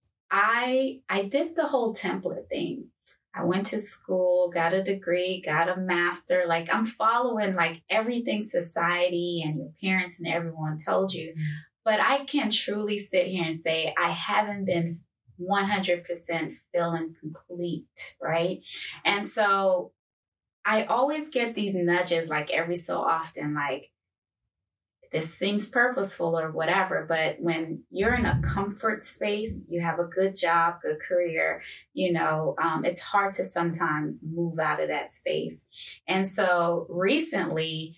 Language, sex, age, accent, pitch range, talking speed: English, female, 20-39, American, 165-200 Hz, 145 wpm